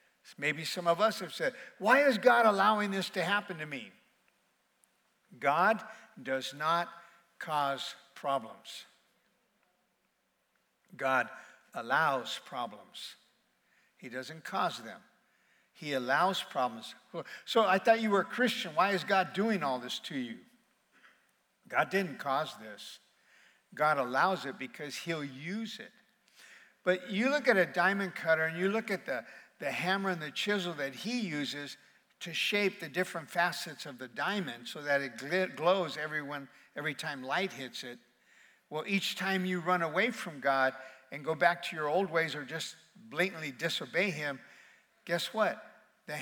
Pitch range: 145-195 Hz